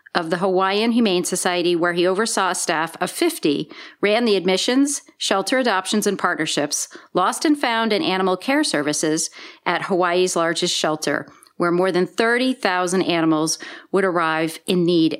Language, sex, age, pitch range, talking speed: English, female, 40-59, 180-230 Hz, 155 wpm